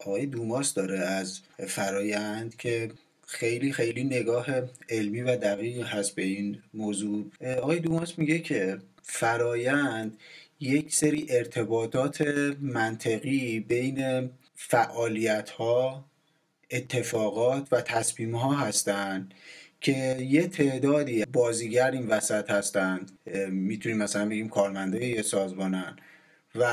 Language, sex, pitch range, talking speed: Persian, male, 110-140 Hz, 100 wpm